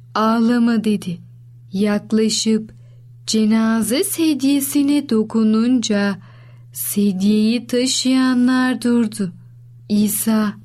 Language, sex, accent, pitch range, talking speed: Turkish, female, native, 180-240 Hz, 55 wpm